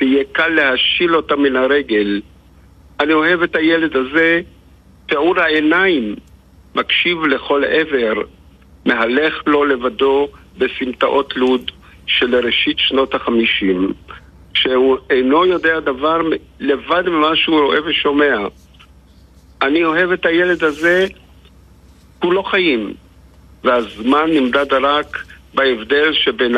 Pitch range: 110-155 Hz